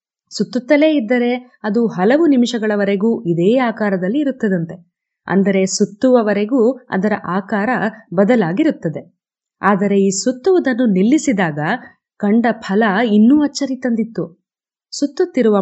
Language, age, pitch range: Kannada, 20-39, 195-260 Hz